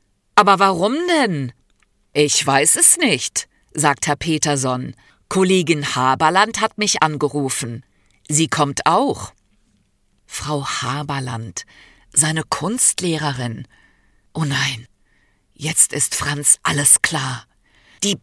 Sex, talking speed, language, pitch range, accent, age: female, 100 wpm, German, 140-190 Hz, German, 50-69